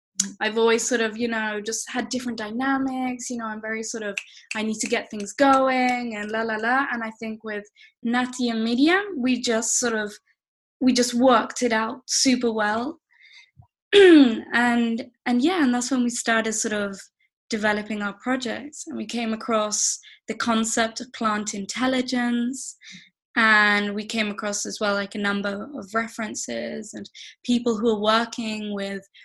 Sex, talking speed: female, 170 wpm